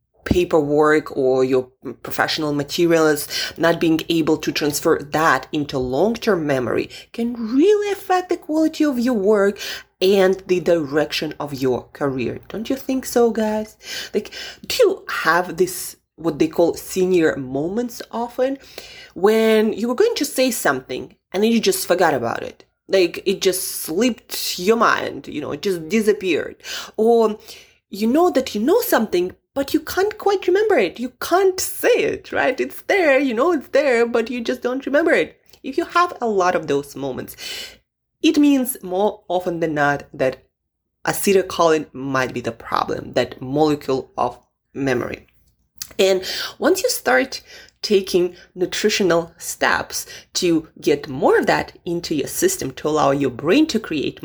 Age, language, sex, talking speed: 20-39, English, female, 160 wpm